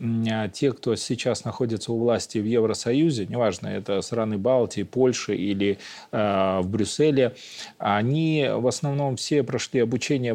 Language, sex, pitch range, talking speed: Russian, male, 110-135 Hz, 135 wpm